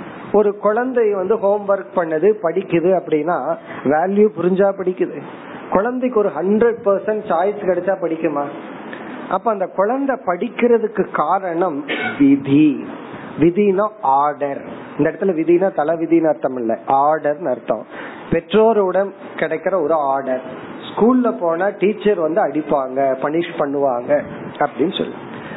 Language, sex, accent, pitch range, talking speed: Tamil, male, native, 155-215 Hz, 35 wpm